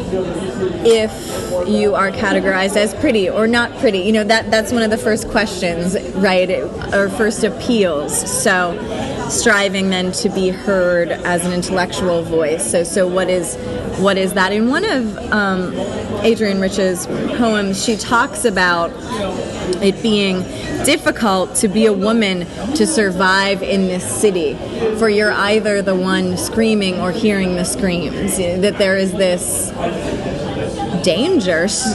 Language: English